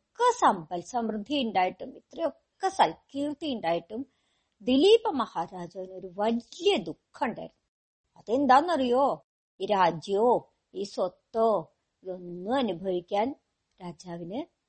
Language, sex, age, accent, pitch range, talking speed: Malayalam, male, 50-69, native, 190-265 Hz, 80 wpm